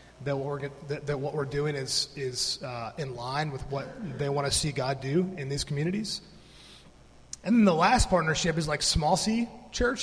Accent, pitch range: American, 140-185 Hz